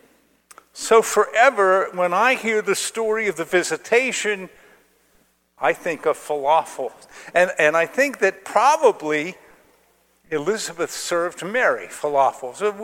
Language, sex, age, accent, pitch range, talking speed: English, male, 50-69, American, 145-210 Hz, 115 wpm